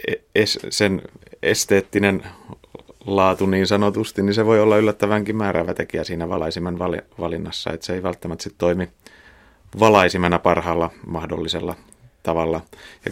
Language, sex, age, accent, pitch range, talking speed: Finnish, male, 30-49, native, 85-100 Hz, 130 wpm